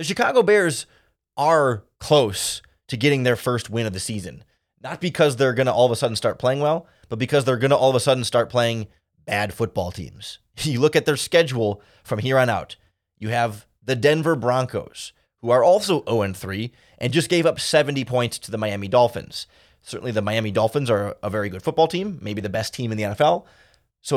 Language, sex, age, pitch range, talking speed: English, male, 20-39, 110-145 Hz, 210 wpm